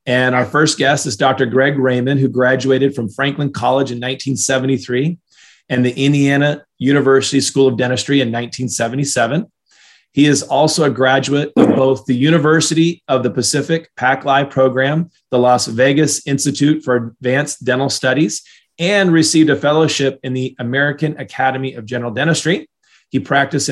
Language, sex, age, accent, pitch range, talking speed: English, male, 30-49, American, 125-145 Hz, 150 wpm